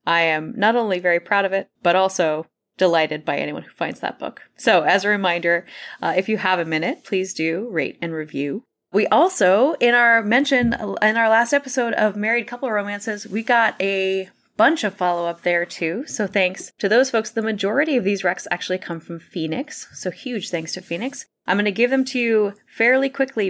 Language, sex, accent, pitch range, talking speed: English, female, American, 170-230 Hz, 210 wpm